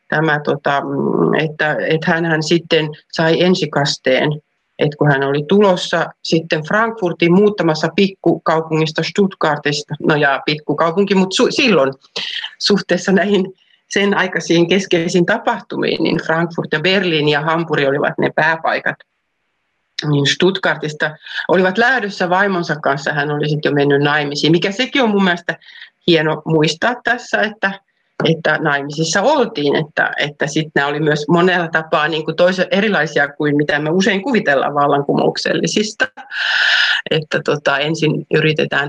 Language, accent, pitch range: Finnish, native, 155-195 Hz